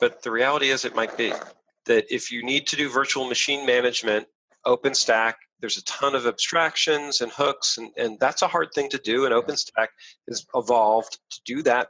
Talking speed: 195 wpm